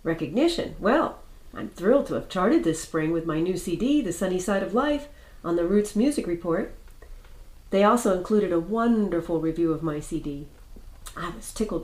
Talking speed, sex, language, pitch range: 175 wpm, female, English, 165-220 Hz